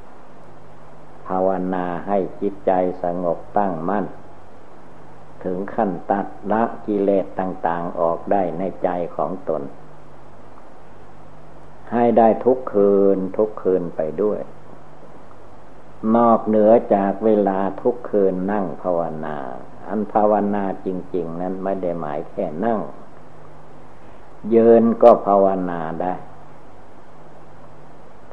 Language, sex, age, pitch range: Thai, male, 60-79, 90-105 Hz